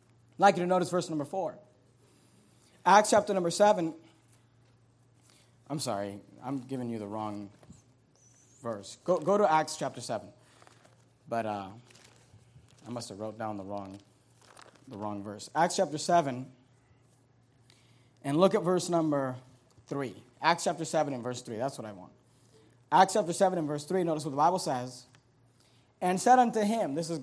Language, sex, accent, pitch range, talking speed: English, male, American, 125-205 Hz, 165 wpm